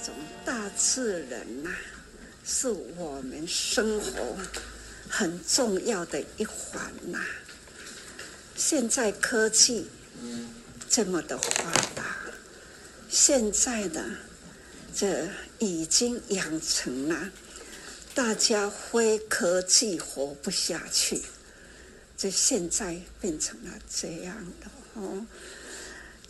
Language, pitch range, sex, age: Chinese, 180-230 Hz, female, 60-79